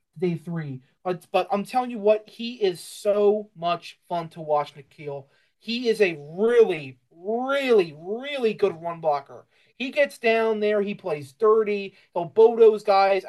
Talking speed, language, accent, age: 165 wpm, English, American, 30-49